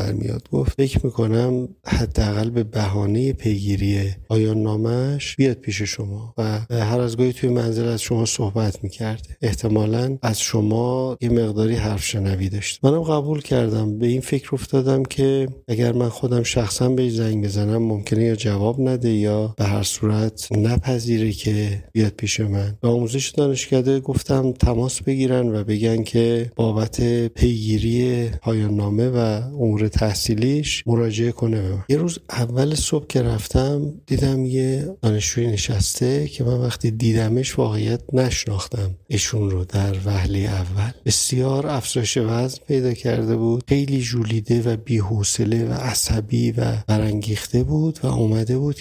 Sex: male